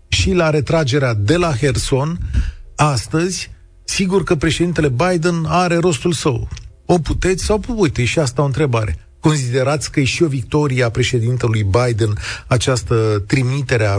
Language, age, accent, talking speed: Romanian, 40-59, native, 145 wpm